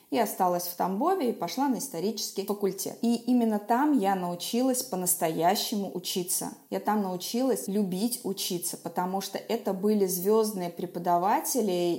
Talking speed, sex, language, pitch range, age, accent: 135 wpm, female, Russian, 180-225 Hz, 20-39, native